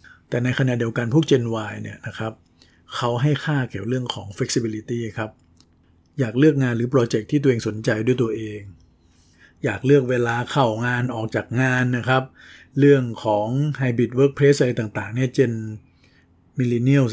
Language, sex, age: Thai, male, 60-79